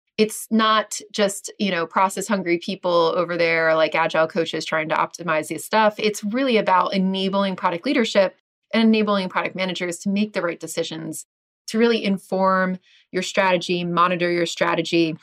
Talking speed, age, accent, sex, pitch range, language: 160 wpm, 30-49, American, female, 175-230 Hz, English